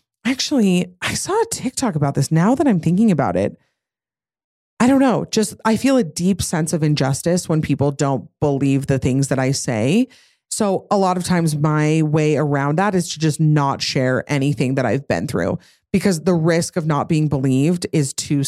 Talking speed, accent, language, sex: 200 wpm, American, English, female